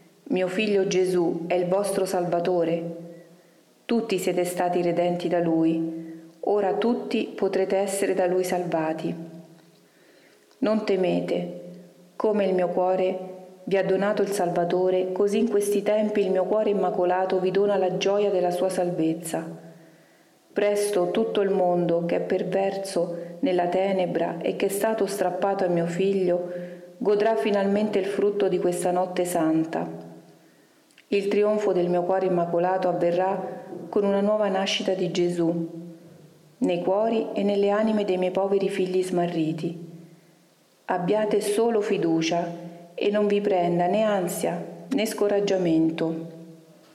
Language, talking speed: Italian, 135 wpm